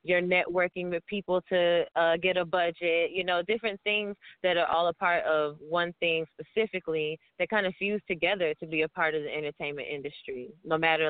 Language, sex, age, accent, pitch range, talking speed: English, female, 20-39, American, 150-180 Hz, 200 wpm